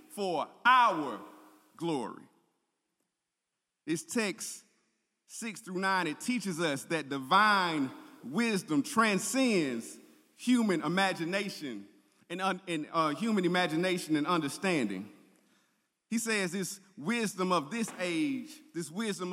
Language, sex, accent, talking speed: English, male, American, 100 wpm